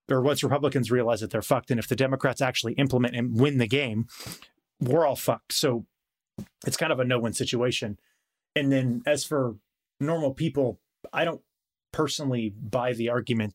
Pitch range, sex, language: 115-135 Hz, male, English